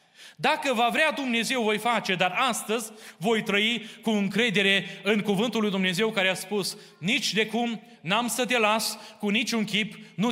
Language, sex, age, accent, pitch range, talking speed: Romanian, male, 30-49, native, 200-240 Hz, 175 wpm